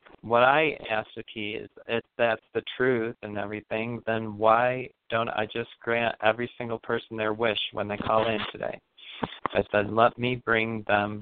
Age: 40-59